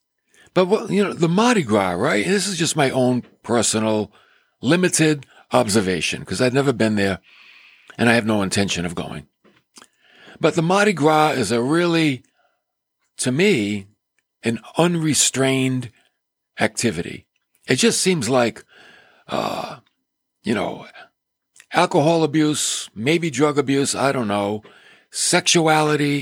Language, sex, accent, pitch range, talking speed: English, male, American, 110-175 Hz, 130 wpm